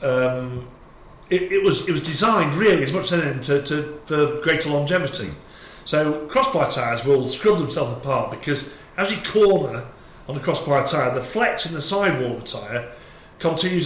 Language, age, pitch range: English, 40-59, 140-180 Hz